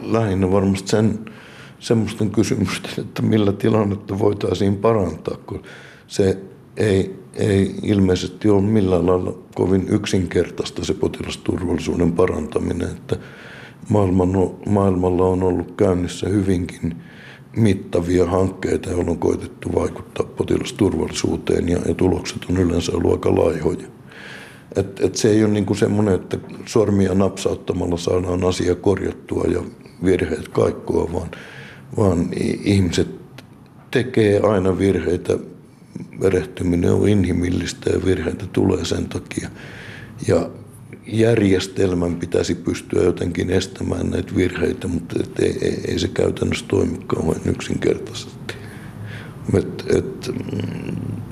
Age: 60-79